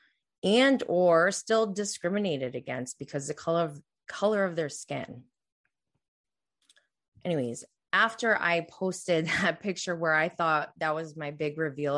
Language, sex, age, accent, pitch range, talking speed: English, female, 20-39, American, 155-195 Hz, 140 wpm